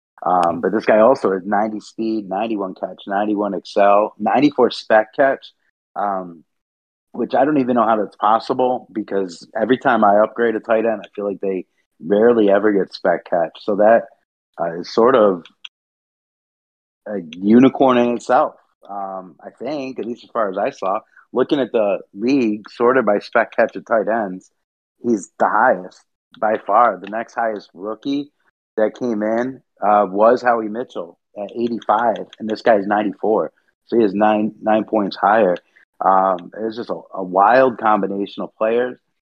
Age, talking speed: 30-49, 170 wpm